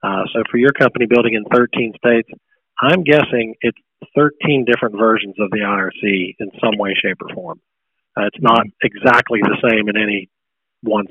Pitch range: 105-125 Hz